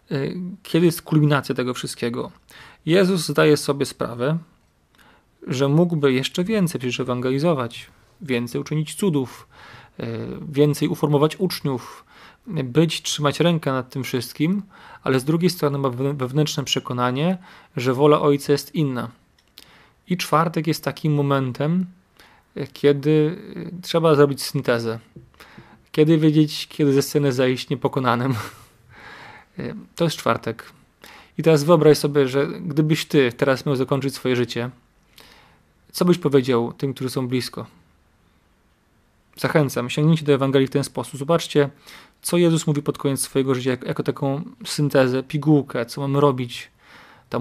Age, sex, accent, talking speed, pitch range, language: 30-49, male, native, 125 wpm, 125-155 Hz, Polish